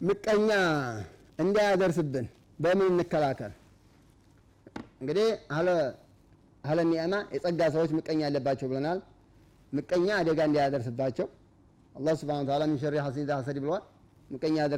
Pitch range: 130-165 Hz